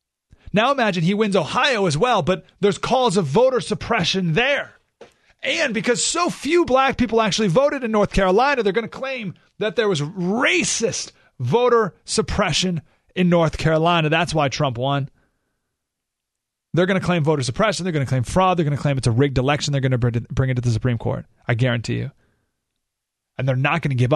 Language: English